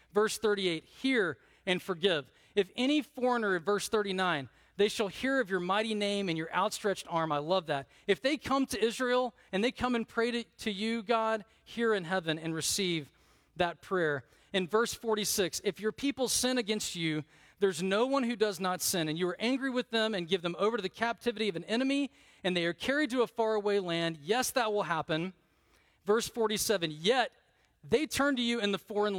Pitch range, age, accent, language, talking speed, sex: 170-225 Hz, 40-59, American, English, 205 wpm, male